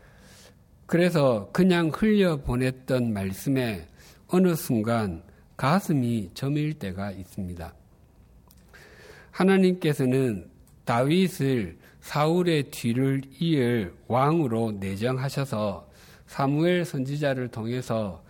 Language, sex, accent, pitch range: Korean, male, native, 100-150 Hz